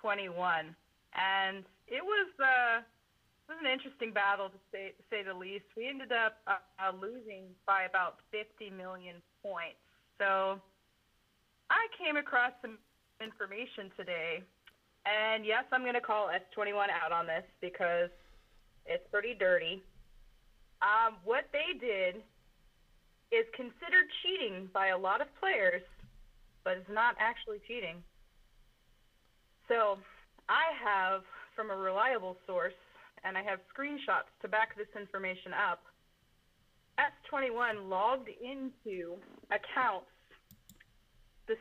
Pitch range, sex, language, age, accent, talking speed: 195-265 Hz, female, English, 30-49, American, 125 wpm